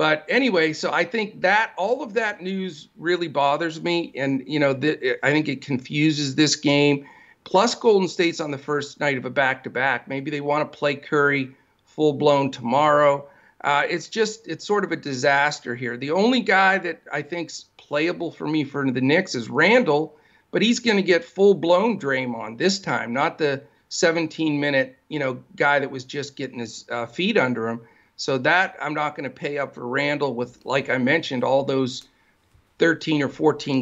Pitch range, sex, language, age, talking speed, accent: 135-175 Hz, male, English, 50-69, 190 wpm, American